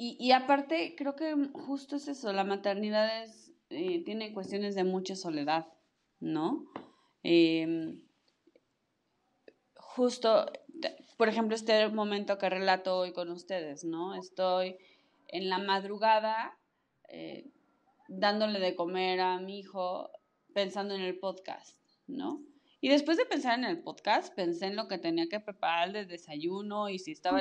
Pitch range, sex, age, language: 185-285 Hz, female, 20-39, Spanish